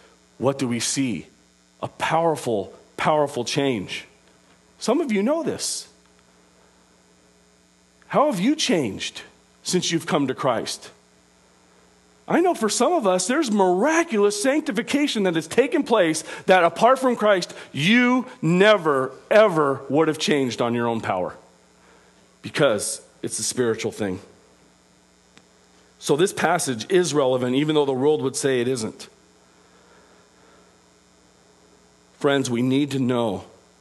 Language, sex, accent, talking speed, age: English, male, American, 130 wpm, 40-59